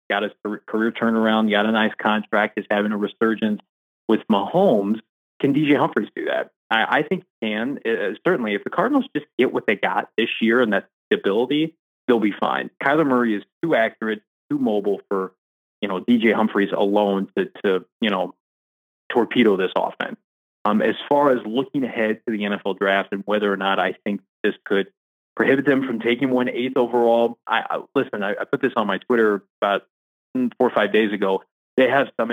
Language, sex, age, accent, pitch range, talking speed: English, male, 30-49, American, 105-120 Hz, 200 wpm